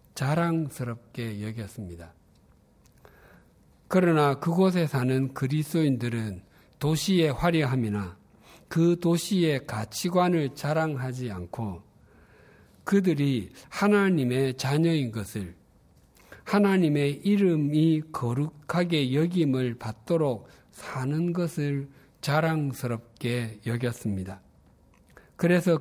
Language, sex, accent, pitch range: Korean, male, native, 110-160 Hz